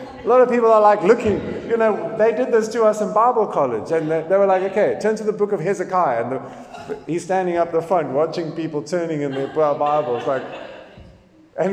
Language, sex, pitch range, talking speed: English, male, 165-215 Hz, 230 wpm